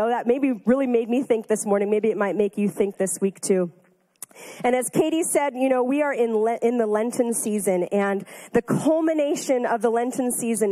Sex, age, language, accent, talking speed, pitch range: female, 30-49, English, American, 220 wpm, 215-255 Hz